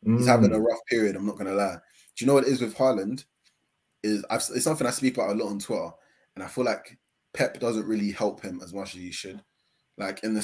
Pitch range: 95-110 Hz